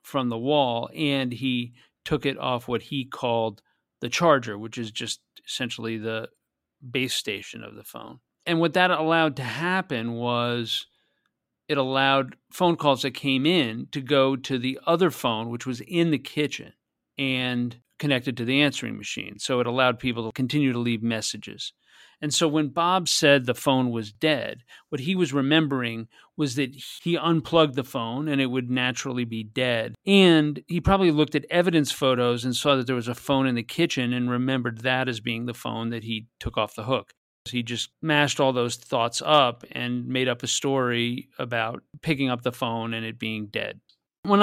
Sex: male